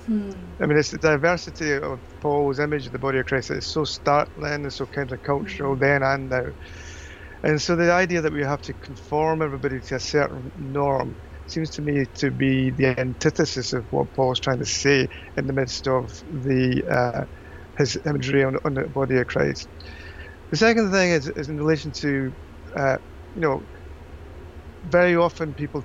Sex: male